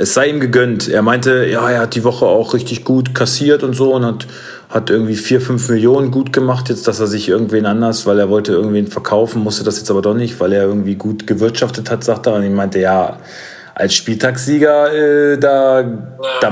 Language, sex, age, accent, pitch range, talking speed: German, male, 40-59, German, 105-130 Hz, 220 wpm